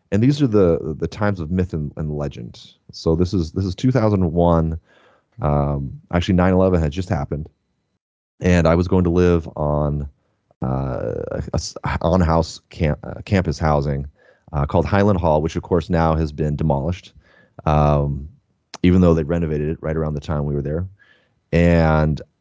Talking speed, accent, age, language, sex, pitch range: 165 wpm, American, 30-49, English, male, 75-90 Hz